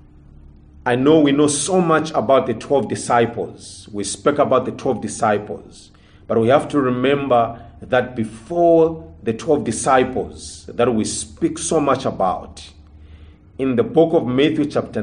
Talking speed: 150 wpm